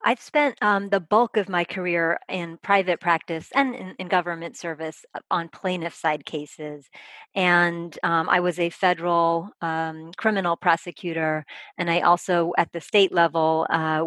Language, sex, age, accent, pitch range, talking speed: English, female, 40-59, American, 160-185 Hz, 160 wpm